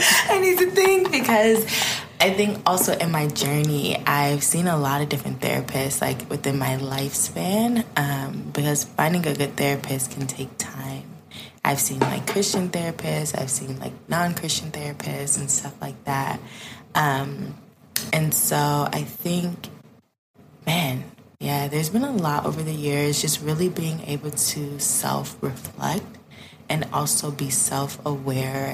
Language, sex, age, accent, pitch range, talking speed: English, female, 20-39, American, 140-165 Hz, 145 wpm